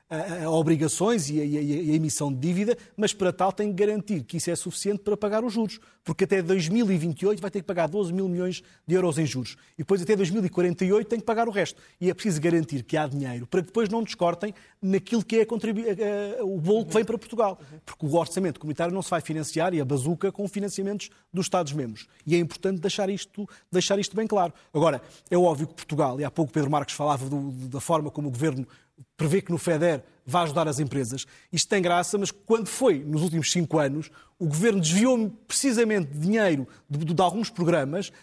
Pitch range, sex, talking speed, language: 155-210 Hz, male, 205 wpm, Portuguese